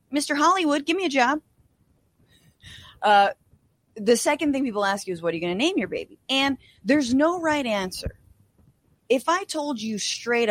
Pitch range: 185-310 Hz